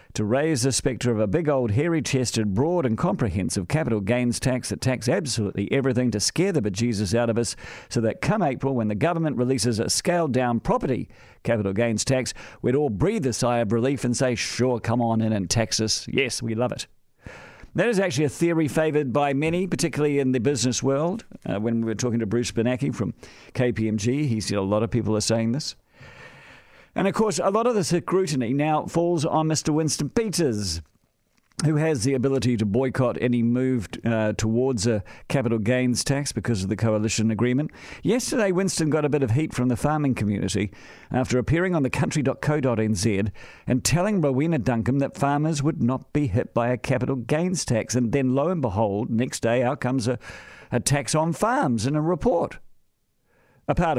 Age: 50-69